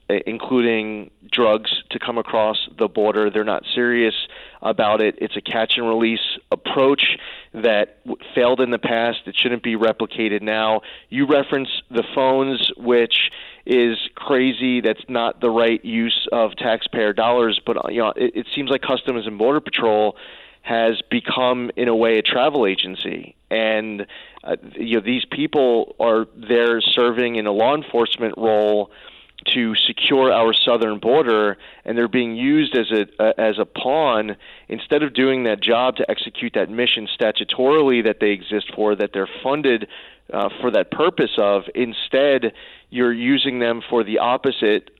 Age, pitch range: 30-49, 110-125 Hz